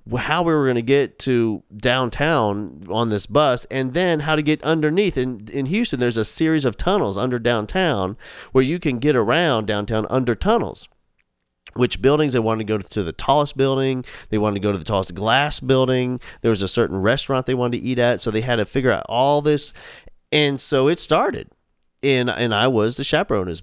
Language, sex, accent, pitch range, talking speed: English, male, American, 100-130 Hz, 210 wpm